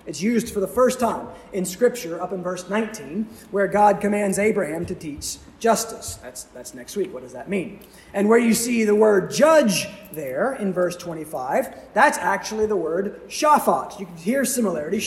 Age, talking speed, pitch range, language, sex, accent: 30-49, 185 wpm, 175-225 Hz, English, male, American